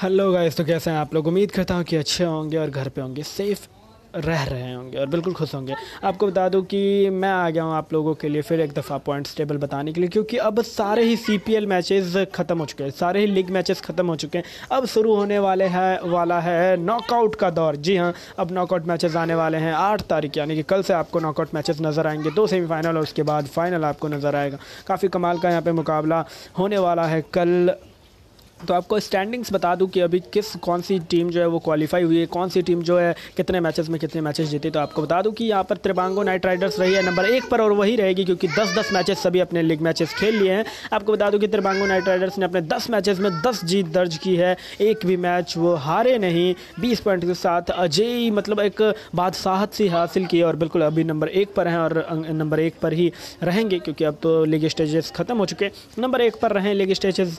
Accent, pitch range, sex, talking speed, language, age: native, 160-195 Hz, male, 240 wpm, Hindi, 20-39